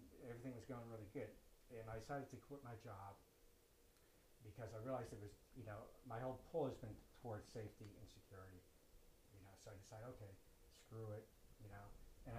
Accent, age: American, 60-79